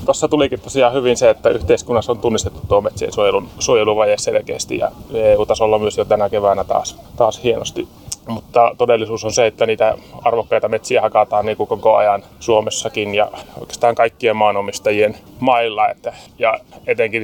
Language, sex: Finnish, male